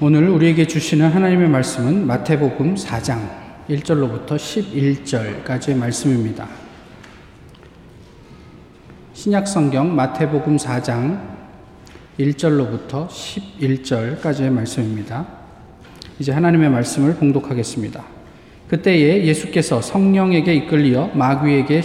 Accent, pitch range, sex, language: native, 135-170 Hz, male, Korean